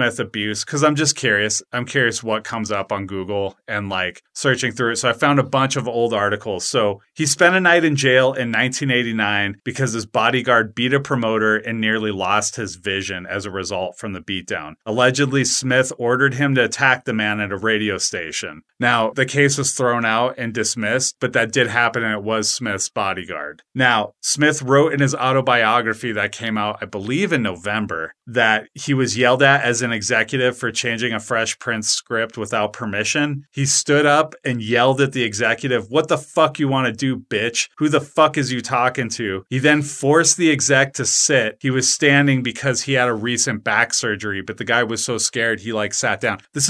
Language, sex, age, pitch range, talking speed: English, male, 30-49, 110-140 Hz, 205 wpm